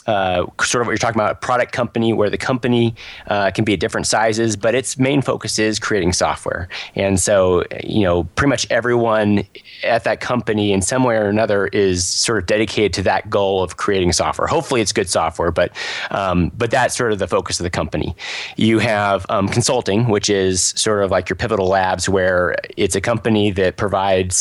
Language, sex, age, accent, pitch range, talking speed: English, male, 30-49, American, 95-110 Hz, 200 wpm